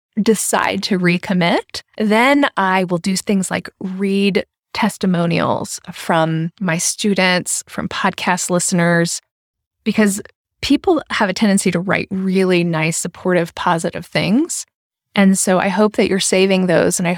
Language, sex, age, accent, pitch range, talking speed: English, female, 20-39, American, 190-235 Hz, 135 wpm